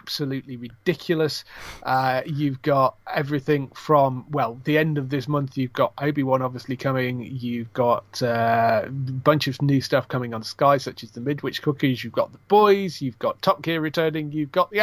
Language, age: English, 30-49